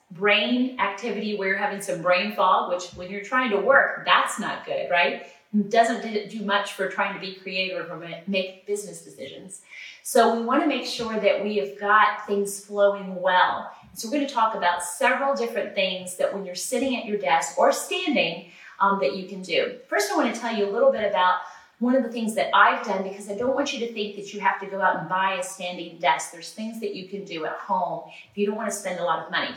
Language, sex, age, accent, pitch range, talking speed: English, female, 30-49, American, 180-225 Hz, 240 wpm